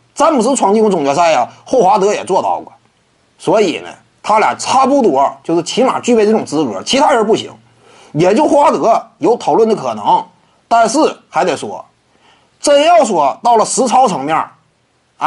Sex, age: male, 30-49